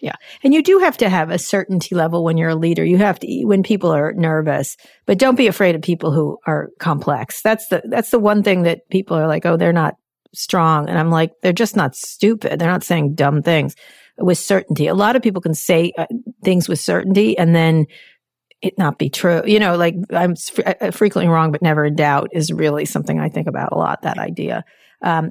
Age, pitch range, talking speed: 40-59, 155-195 Hz, 230 wpm